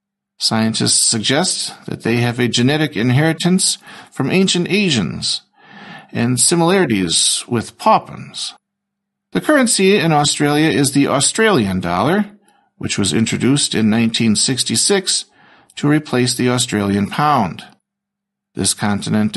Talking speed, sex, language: 110 wpm, male, Slovak